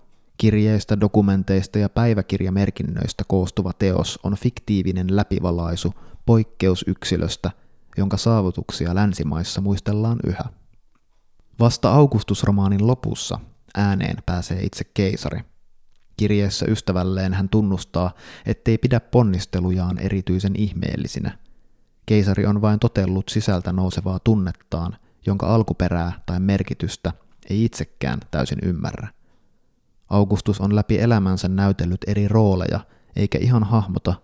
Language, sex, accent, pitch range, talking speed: Finnish, male, native, 95-105 Hz, 100 wpm